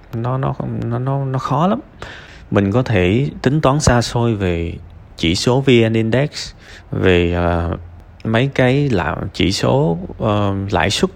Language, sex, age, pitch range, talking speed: Vietnamese, male, 20-39, 100-135 Hz, 150 wpm